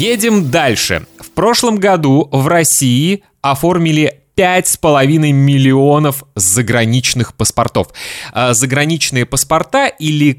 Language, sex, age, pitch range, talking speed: Russian, male, 20-39, 110-165 Hz, 85 wpm